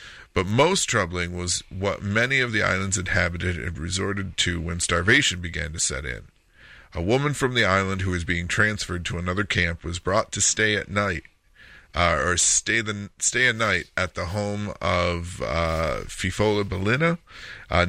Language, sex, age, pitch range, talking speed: English, male, 40-59, 85-105 Hz, 175 wpm